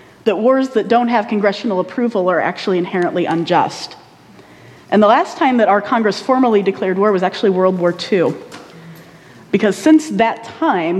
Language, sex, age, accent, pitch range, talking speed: English, female, 40-59, American, 185-230 Hz, 165 wpm